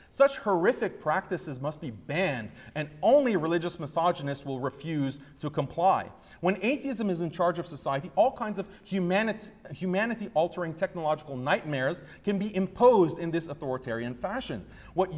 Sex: male